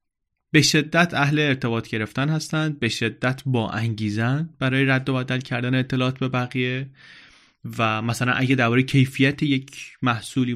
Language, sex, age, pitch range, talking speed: Persian, male, 20-39, 105-130 Hz, 135 wpm